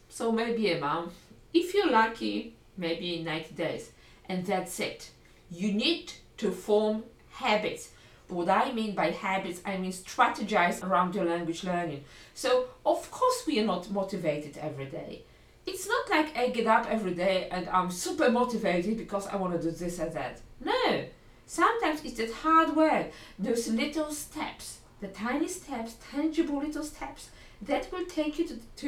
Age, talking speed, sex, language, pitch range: 50-69, 165 wpm, female, English, 180-275 Hz